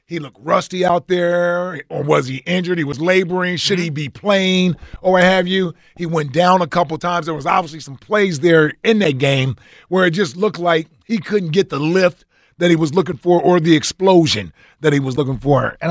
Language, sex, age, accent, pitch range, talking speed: English, male, 30-49, American, 150-205 Hz, 225 wpm